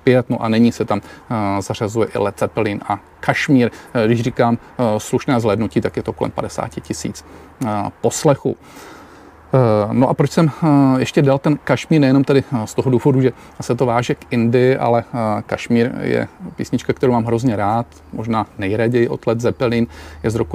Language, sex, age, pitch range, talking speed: Czech, male, 40-59, 105-125 Hz, 165 wpm